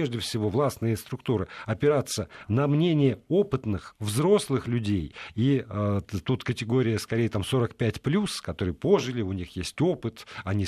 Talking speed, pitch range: 135 wpm, 110-145 Hz